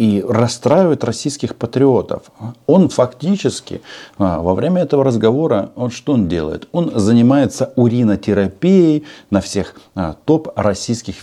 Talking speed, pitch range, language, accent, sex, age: 105 wpm, 95-145 Hz, Russian, native, male, 40-59